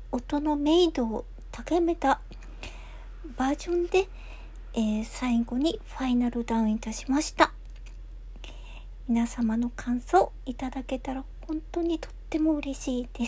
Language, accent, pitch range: Japanese, native, 235-300 Hz